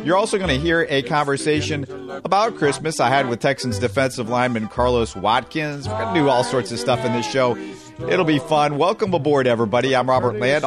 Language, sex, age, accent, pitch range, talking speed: English, male, 50-69, American, 120-160 Hz, 210 wpm